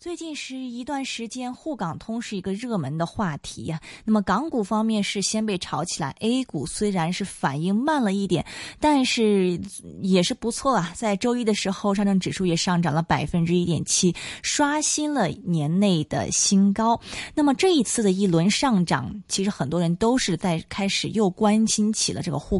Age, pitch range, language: 20-39, 175-230 Hz, Chinese